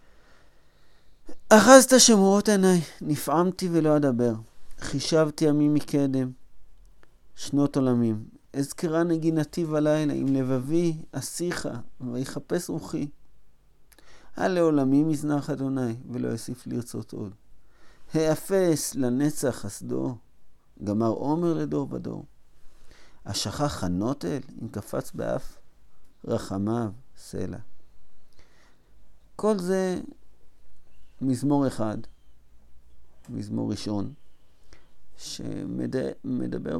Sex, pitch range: male, 105-150 Hz